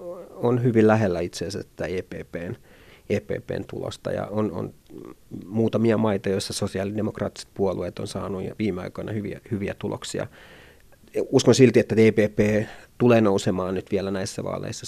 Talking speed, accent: 135 wpm, native